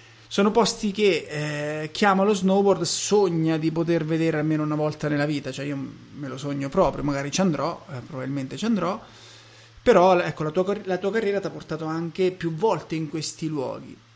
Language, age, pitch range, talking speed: Italian, 30-49, 140-175 Hz, 190 wpm